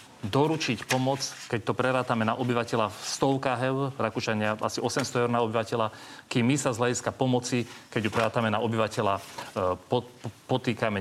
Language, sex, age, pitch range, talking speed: Slovak, male, 40-59, 110-135 Hz, 145 wpm